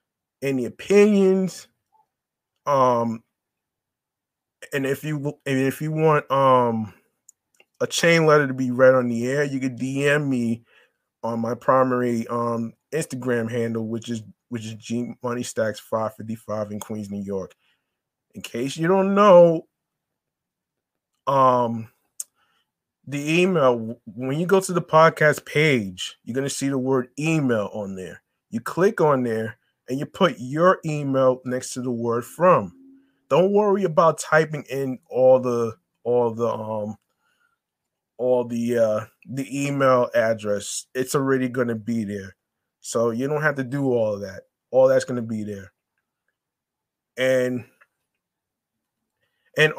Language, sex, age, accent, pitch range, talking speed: English, male, 20-39, American, 115-150 Hz, 140 wpm